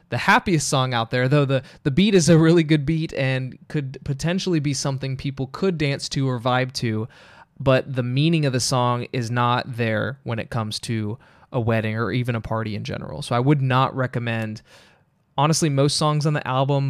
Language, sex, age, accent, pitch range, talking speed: English, male, 20-39, American, 125-155 Hz, 205 wpm